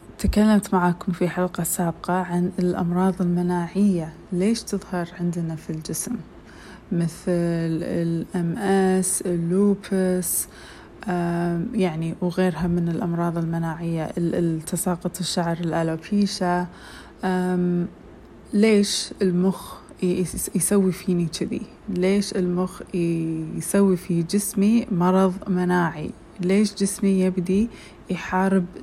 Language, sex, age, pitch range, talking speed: Arabic, female, 30-49, 175-195 Hz, 85 wpm